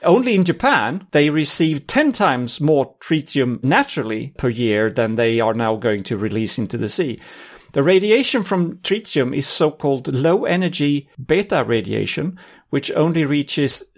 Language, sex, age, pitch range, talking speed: English, male, 40-59, 130-180 Hz, 145 wpm